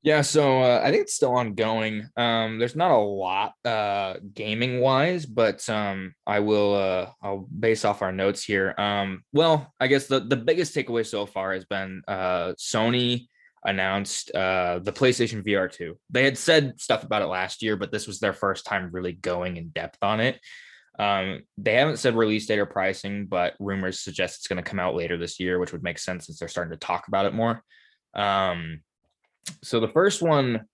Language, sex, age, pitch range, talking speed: English, male, 20-39, 100-115 Hz, 200 wpm